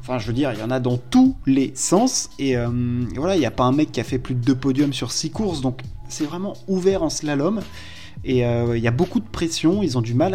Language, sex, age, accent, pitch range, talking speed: French, male, 20-39, French, 120-165 Hz, 285 wpm